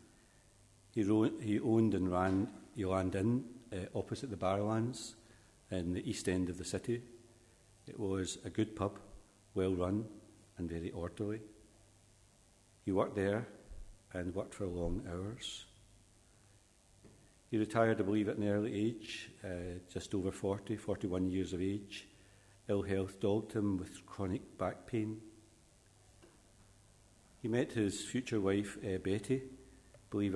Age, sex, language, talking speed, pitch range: 60-79, male, English, 135 wpm, 95-110 Hz